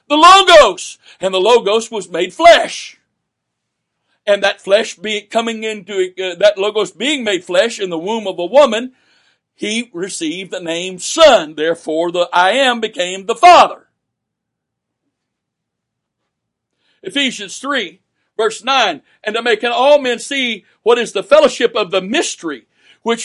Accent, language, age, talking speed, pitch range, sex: American, English, 60-79, 145 wpm, 215-280 Hz, male